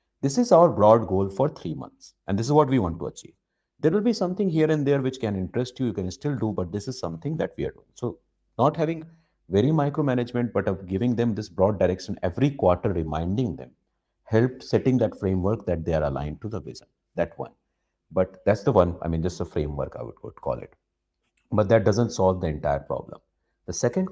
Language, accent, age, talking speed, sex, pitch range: English, Indian, 50-69, 225 wpm, male, 90-130 Hz